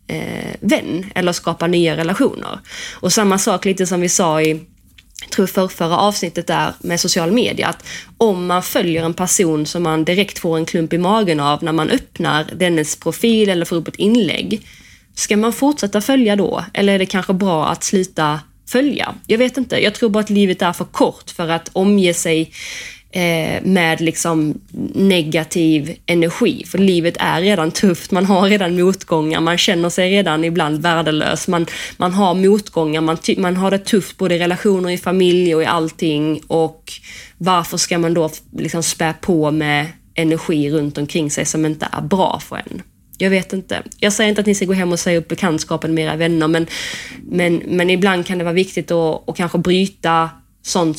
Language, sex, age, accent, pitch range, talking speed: Swedish, female, 30-49, native, 160-190 Hz, 190 wpm